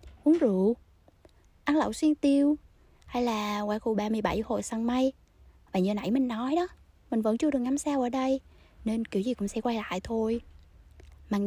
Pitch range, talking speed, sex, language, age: 195-260 Hz, 195 wpm, female, Vietnamese, 20-39